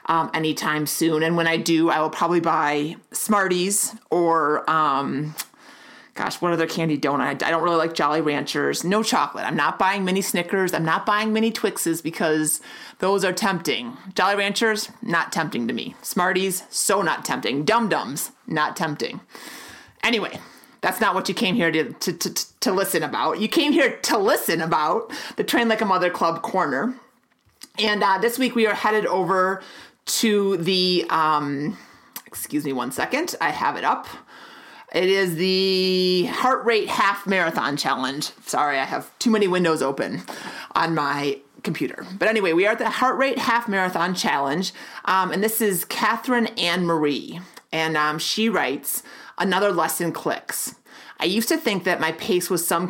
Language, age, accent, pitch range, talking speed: English, 30-49, American, 160-215 Hz, 170 wpm